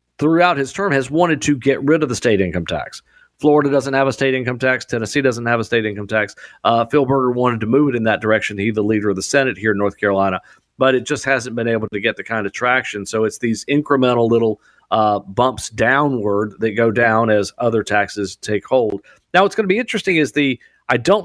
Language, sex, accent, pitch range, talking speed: English, male, American, 105-135 Hz, 240 wpm